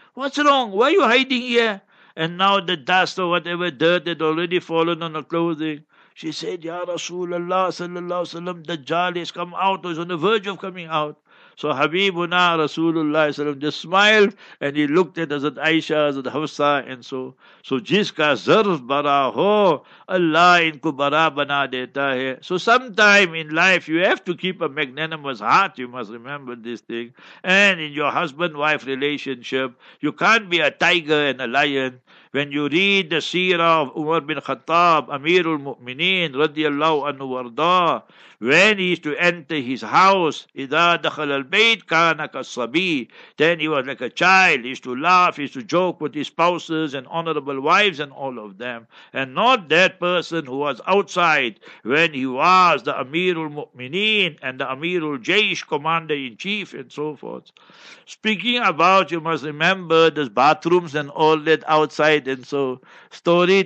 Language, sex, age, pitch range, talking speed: English, male, 60-79, 145-180 Hz, 165 wpm